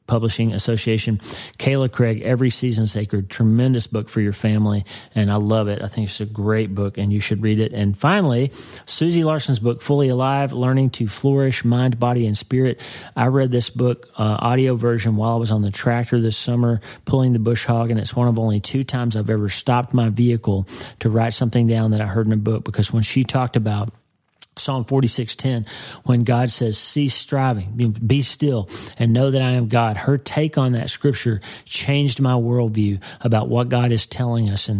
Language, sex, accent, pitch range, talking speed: English, male, American, 110-125 Hz, 205 wpm